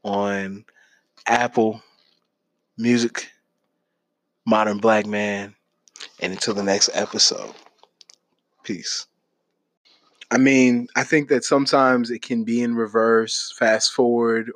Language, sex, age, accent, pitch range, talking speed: English, male, 20-39, American, 100-120 Hz, 105 wpm